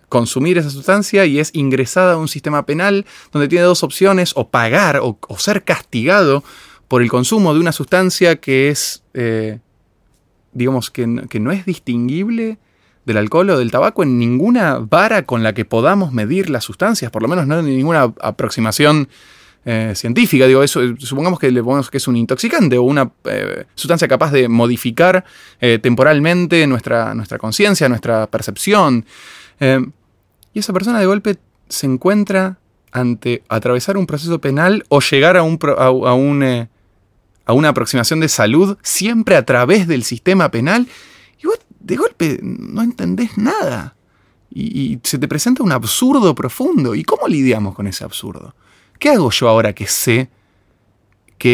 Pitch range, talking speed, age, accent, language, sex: 115-180 Hz, 165 wpm, 20-39, Argentinian, Spanish, male